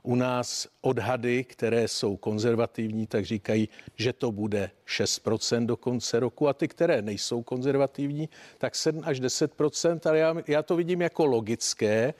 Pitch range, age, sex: 115-150 Hz, 50-69, male